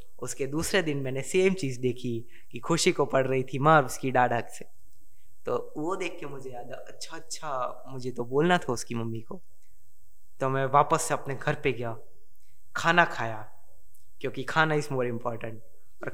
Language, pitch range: Hindi, 120-155 Hz